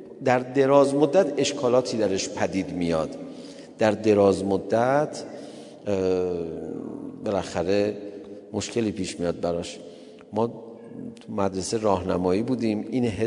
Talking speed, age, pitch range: 90 wpm, 50-69, 95-130 Hz